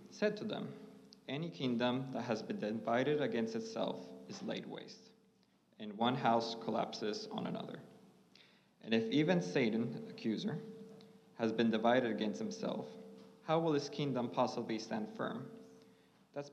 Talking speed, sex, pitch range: 140 wpm, male, 115-160 Hz